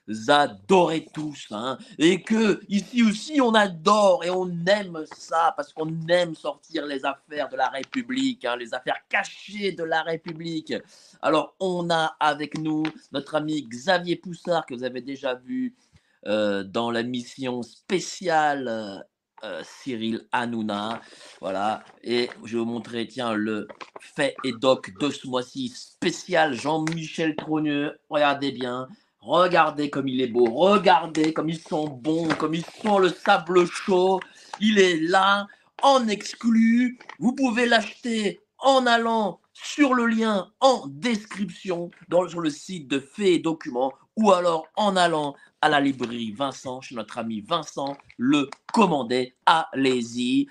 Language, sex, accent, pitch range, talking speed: French, male, French, 140-200 Hz, 150 wpm